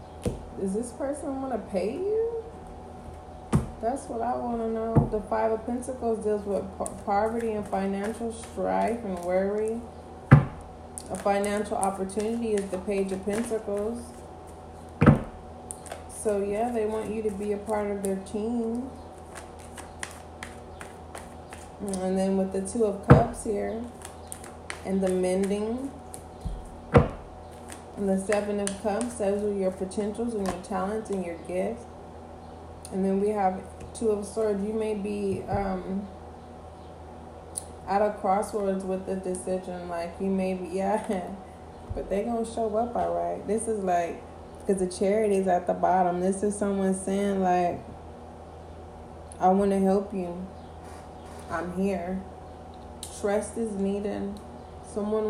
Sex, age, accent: female, 20-39, American